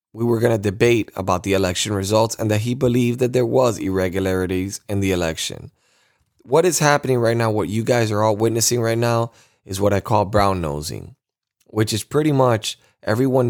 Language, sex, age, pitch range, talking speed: English, male, 20-39, 105-125 Hz, 195 wpm